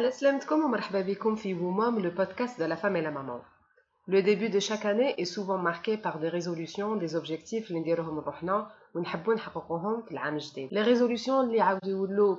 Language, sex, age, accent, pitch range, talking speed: French, female, 30-49, French, 170-215 Hz, 115 wpm